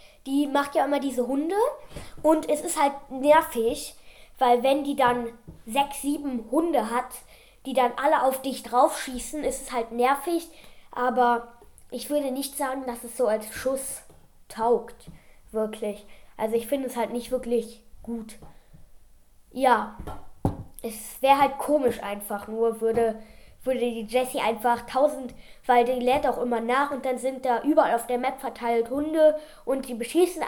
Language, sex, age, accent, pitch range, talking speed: German, female, 10-29, German, 235-290 Hz, 160 wpm